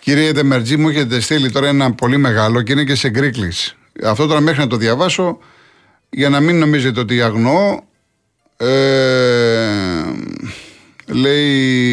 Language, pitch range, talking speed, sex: Greek, 115-145 Hz, 140 wpm, male